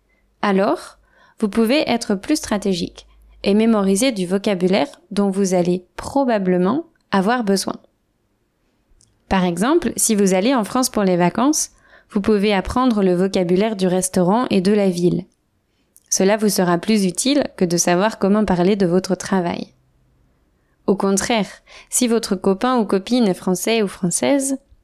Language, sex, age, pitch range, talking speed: French, female, 20-39, 185-230 Hz, 145 wpm